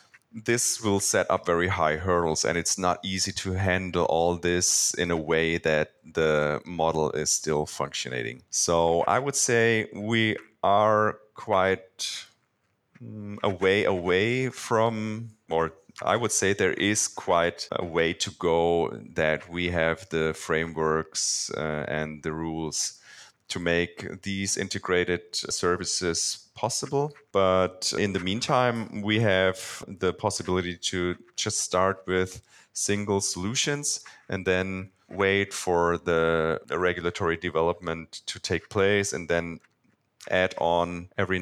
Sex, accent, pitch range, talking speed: male, German, 85-105 Hz, 130 wpm